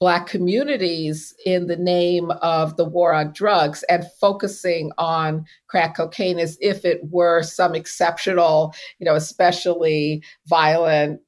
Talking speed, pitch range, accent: 135 wpm, 170-205 Hz, American